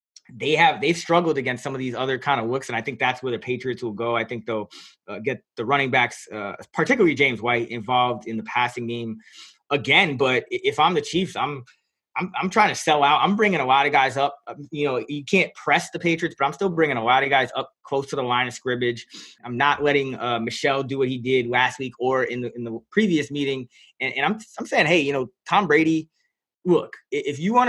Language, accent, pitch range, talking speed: English, American, 120-150 Hz, 245 wpm